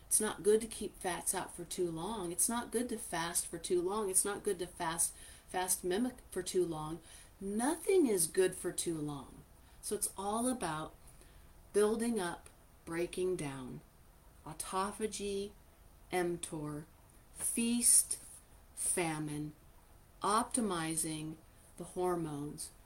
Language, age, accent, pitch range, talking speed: English, 40-59, American, 170-215 Hz, 130 wpm